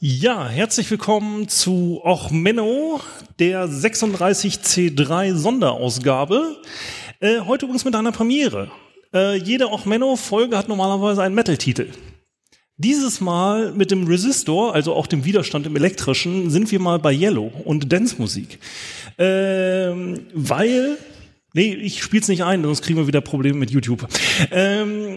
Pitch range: 165-210 Hz